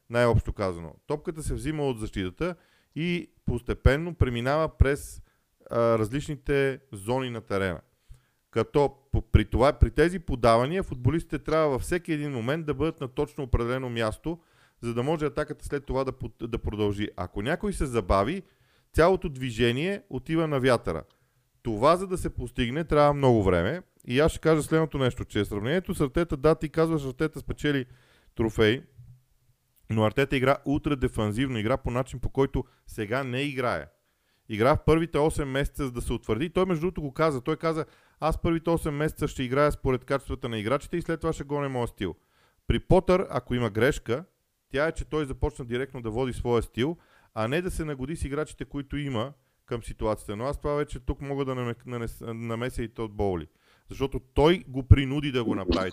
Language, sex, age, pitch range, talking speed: Bulgarian, male, 40-59, 115-155 Hz, 180 wpm